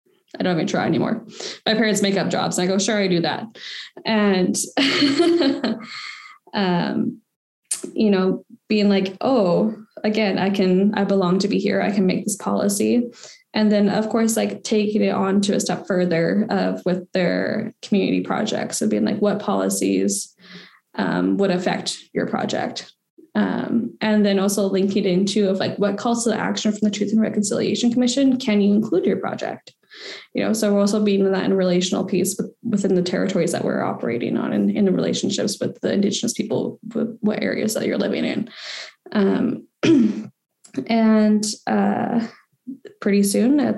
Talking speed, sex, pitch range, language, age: 175 wpm, female, 195-225 Hz, English, 10-29